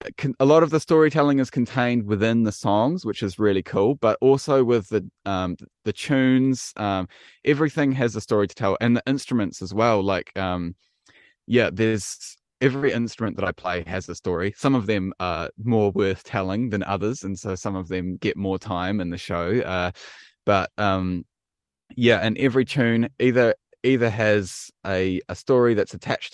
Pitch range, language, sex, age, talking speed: 90-120 Hz, English, male, 10-29, 180 wpm